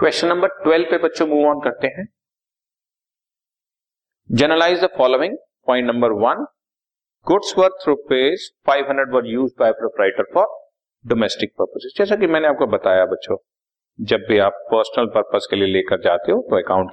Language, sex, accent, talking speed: Hindi, male, native, 80 wpm